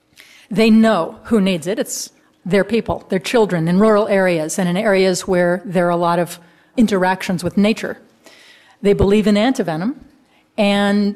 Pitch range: 185-250 Hz